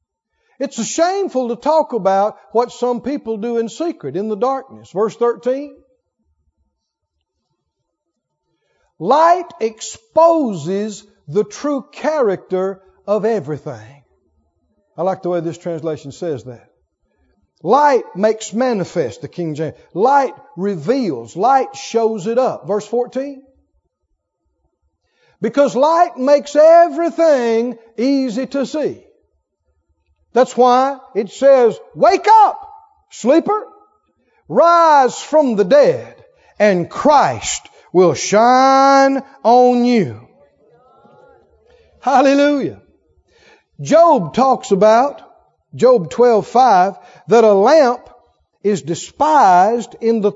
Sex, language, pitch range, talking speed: male, English, 190-285 Hz, 100 wpm